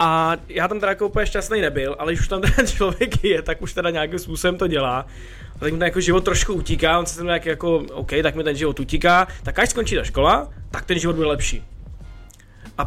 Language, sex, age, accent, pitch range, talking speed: Czech, male, 20-39, native, 140-175 Hz, 235 wpm